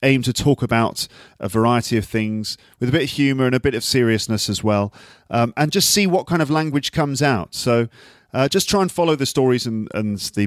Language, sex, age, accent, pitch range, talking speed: English, male, 40-59, British, 100-130 Hz, 235 wpm